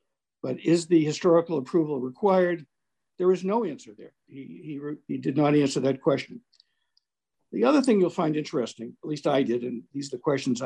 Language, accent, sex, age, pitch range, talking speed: English, American, male, 60-79, 140-185 Hz, 190 wpm